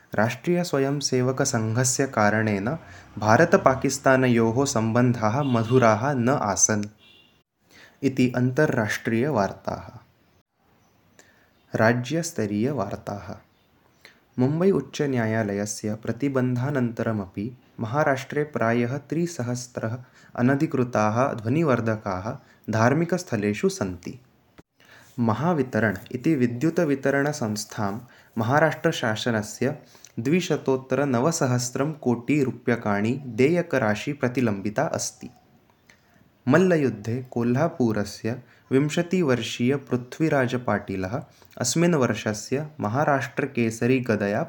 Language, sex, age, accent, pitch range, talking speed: Hindi, male, 20-39, native, 110-140 Hz, 50 wpm